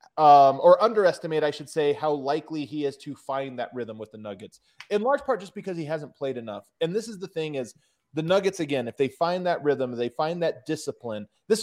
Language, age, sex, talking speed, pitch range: English, 20-39, male, 230 wpm, 135-180 Hz